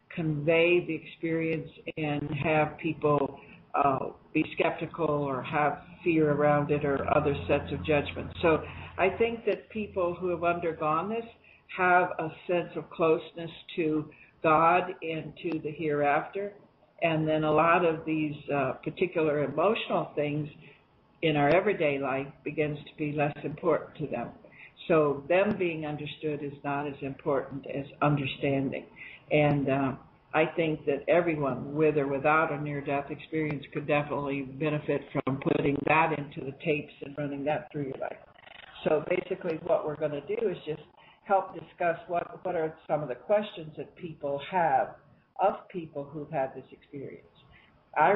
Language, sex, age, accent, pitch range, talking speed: English, female, 60-79, American, 145-165 Hz, 155 wpm